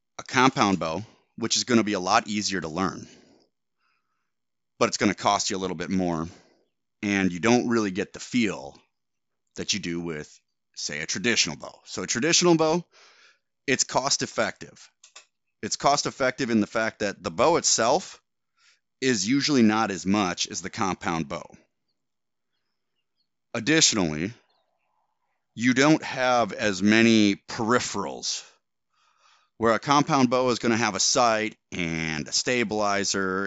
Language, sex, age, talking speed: English, male, 30-49, 150 wpm